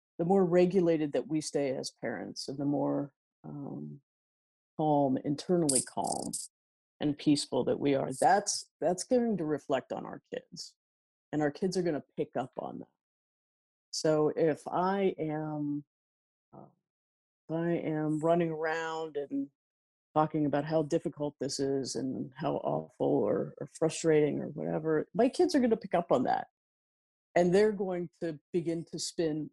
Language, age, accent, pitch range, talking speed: English, 40-59, American, 145-180 Hz, 160 wpm